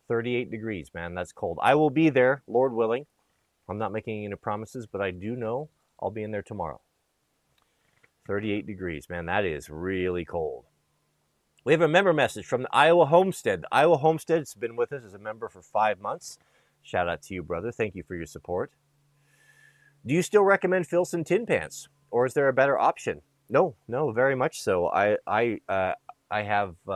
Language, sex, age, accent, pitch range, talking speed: Italian, male, 30-49, American, 100-135 Hz, 195 wpm